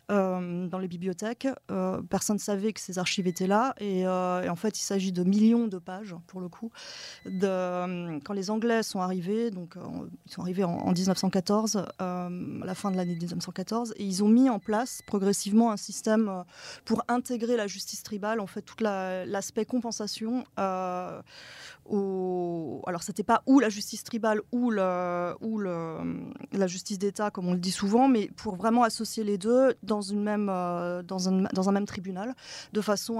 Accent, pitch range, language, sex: French, 185-220 Hz, French, female